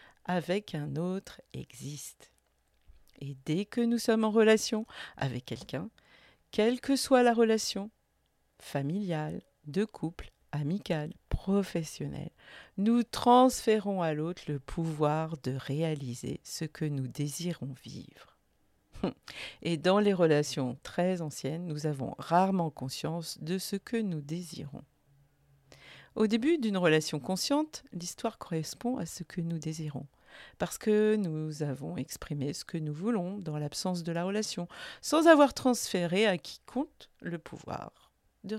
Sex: female